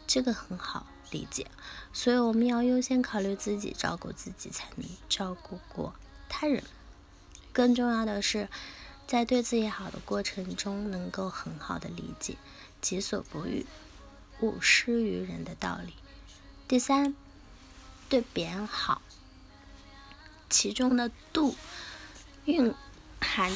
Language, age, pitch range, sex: Chinese, 20-39, 205-265 Hz, female